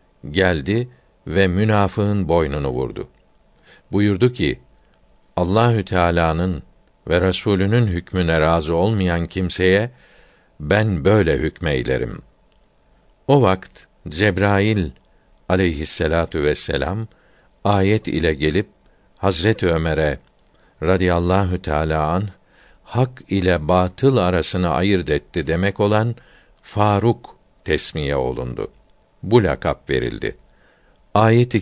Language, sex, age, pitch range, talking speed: Turkish, male, 60-79, 85-105 Hz, 85 wpm